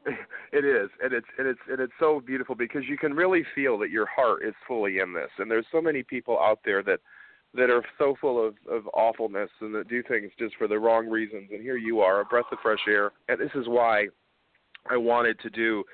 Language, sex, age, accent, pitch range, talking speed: English, male, 40-59, American, 110-155 Hz, 235 wpm